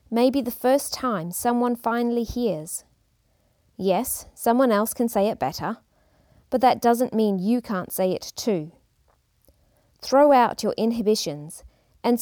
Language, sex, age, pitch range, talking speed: English, female, 40-59, 185-240 Hz, 135 wpm